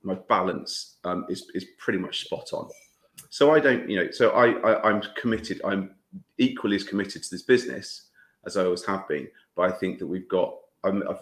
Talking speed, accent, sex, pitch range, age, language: 210 wpm, British, male, 90-110 Hz, 30-49, English